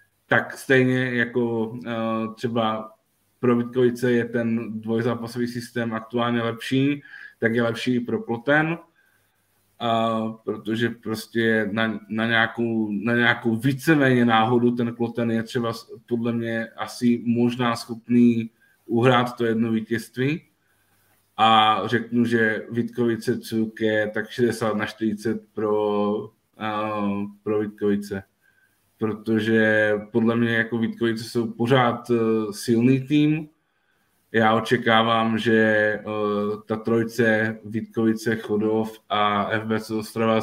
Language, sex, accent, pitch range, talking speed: Czech, male, native, 110-120 Hz, 105 wpm